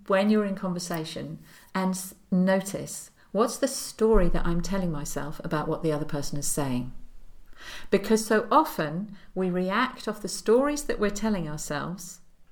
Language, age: English, 50-69